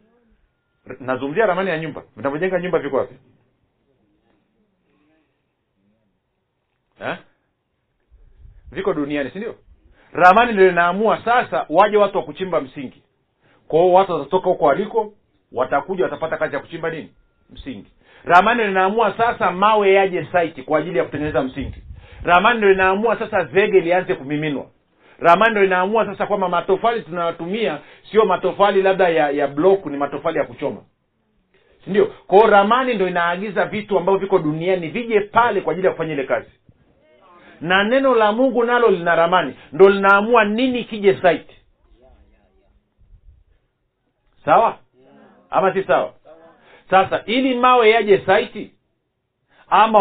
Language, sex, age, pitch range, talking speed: Swahili, male, 50-69, 150-205 Hz, 130 wpm